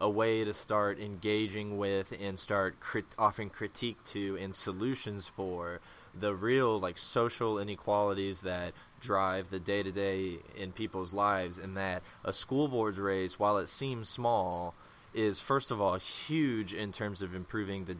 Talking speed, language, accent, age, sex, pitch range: 155 wpm, English, American, 20-39, male, 95-115 Hz